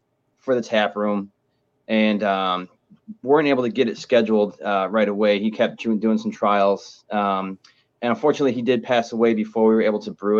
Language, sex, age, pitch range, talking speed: English, male, 20-39, 100-120 Hz, 190 wpm